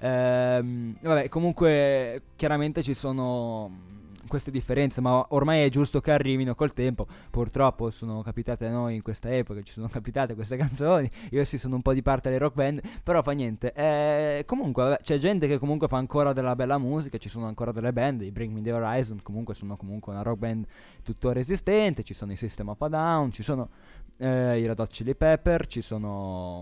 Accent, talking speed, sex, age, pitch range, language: native, 200 wpm, male, 20-39, 110-145 Hz, Italian